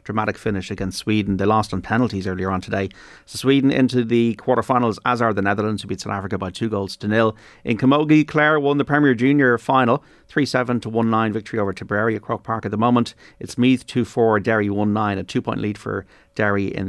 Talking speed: 215 wpm